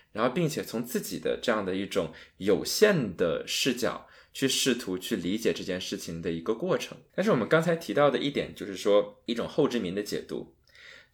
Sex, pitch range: male, 100-165 Hz